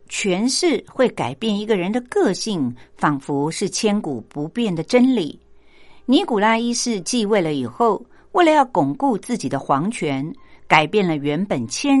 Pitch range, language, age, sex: 155-225 Hz, Japanese, 50-69, female